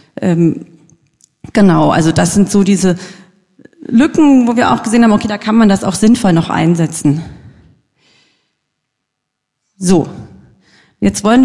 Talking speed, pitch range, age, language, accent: 125 wpm, 195-240 Hz, 40-59, English, German